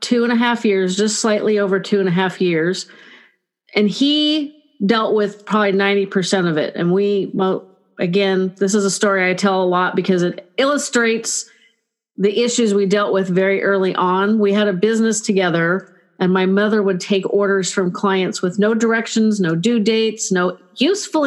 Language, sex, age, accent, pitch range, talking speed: English, female, 40-59, American, 190-230 Hz, 185 wpm